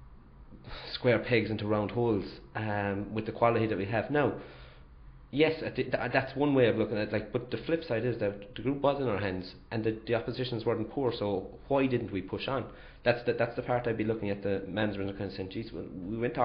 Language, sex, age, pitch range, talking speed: English, male, 30-49, 95-115 Hz, 245 wpm